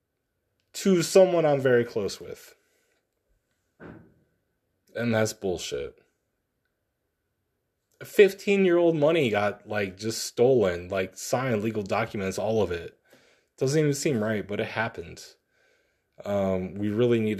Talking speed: 120 wpm